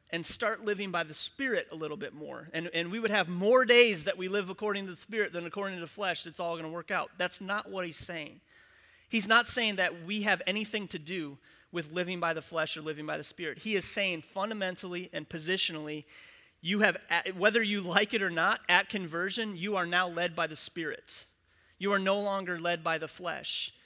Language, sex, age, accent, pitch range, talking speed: English, male, 30-49, American, 170-205 Hz, 225 wpm